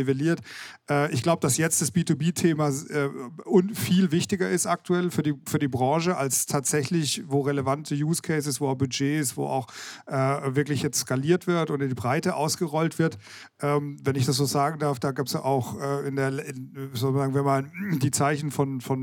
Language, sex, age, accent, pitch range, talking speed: German, male, 40-59, German, 135-155 Hz, 165 wpm